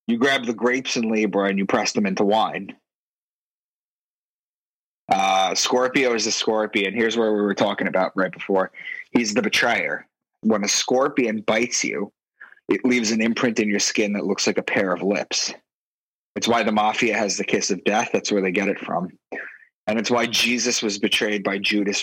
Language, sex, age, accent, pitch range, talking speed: English, male, 20-39, American, 105-120 Hz, 190 wpm